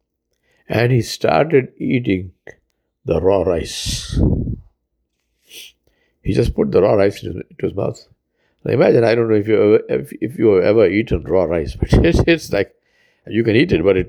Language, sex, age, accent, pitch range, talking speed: English, male, 60-79, Indian, 70-105 Hz, 165 wpm